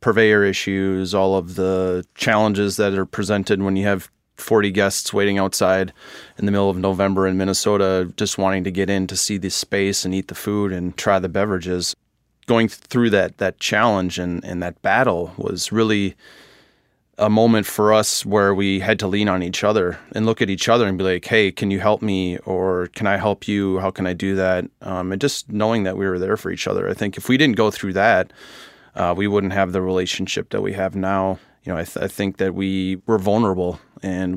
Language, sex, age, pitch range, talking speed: English, male, 30-49, 95-100 Hz, 220 wpm